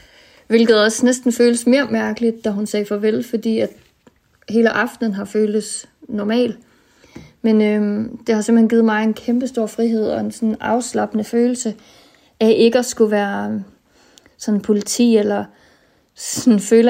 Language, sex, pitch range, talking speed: Danish, female, 215-235 Hz, 145 wpm